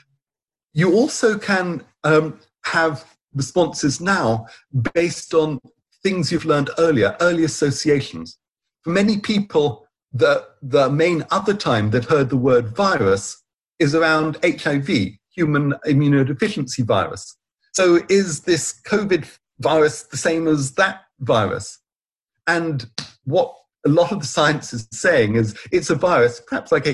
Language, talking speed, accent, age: English, 130 wpm, British, 50-69